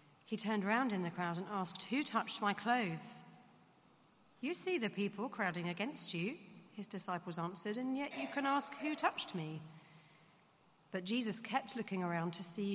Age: 40-59